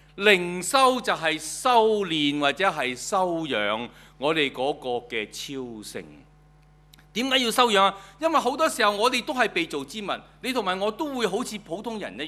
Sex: male